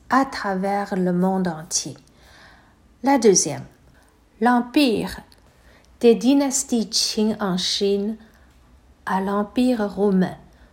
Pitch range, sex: 200-245 Hz, female